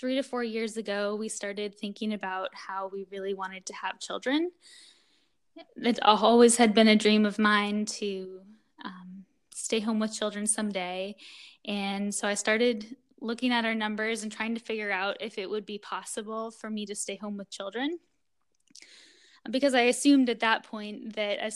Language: English